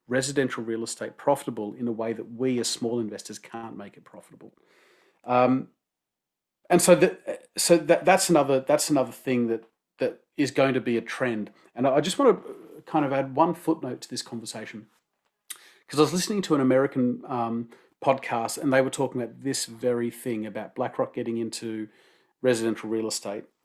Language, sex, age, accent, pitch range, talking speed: English, male, 40-59, Australian, 115-145 Hz, 185 wpm